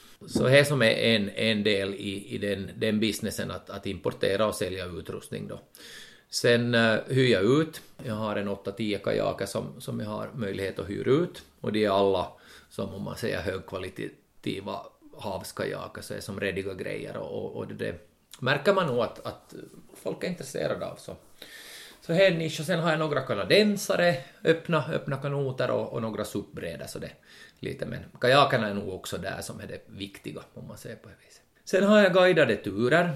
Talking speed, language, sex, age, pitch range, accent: 190 wpm, Swedish, male, 30-49, 100-140 Hz, Finnish